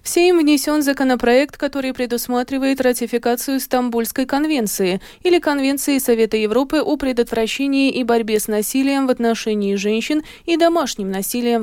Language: Russian